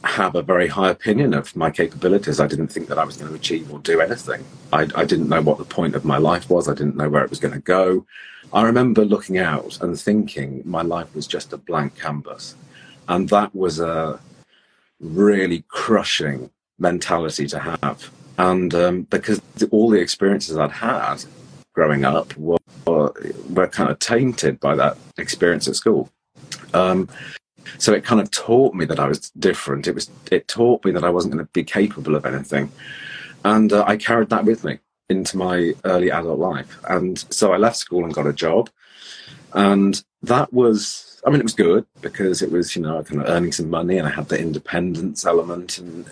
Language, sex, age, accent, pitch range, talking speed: English, male, 40-59, British, 80-105 Hz, 200 wpm